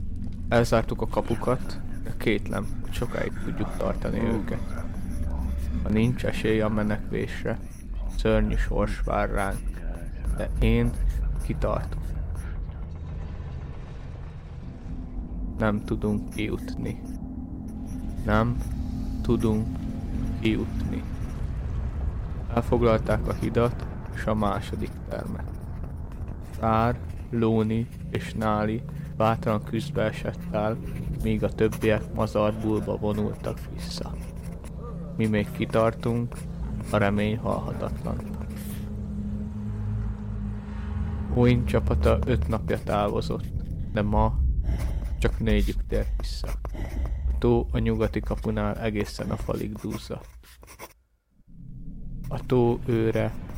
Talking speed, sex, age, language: 85 wpm, male, 20-39, Hungarian